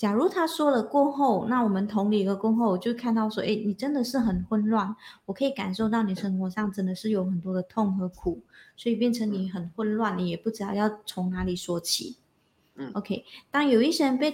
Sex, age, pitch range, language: female, 20-39, 190-240 Hz, Chinese